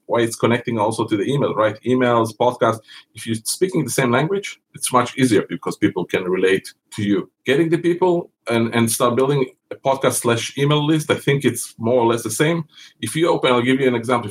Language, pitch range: English, 110-135 Hz